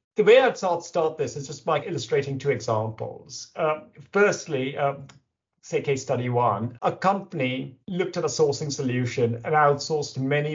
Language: English